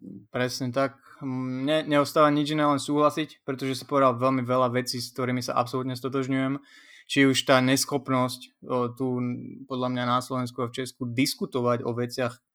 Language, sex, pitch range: Slovak, male, 120-130 Hz